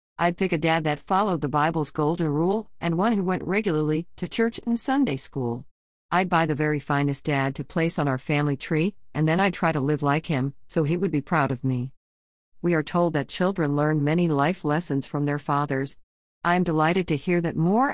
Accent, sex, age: American, female, 50-69